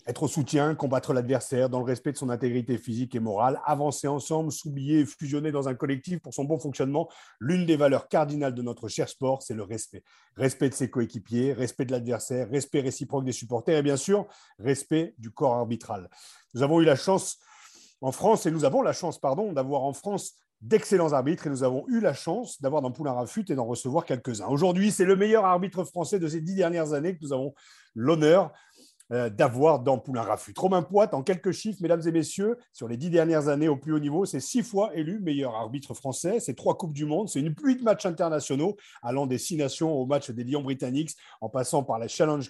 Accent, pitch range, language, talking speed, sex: French, 130-170 Hz, French, 215 wpm, male